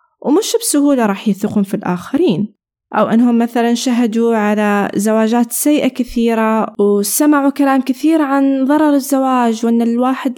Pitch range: 205-275 Hz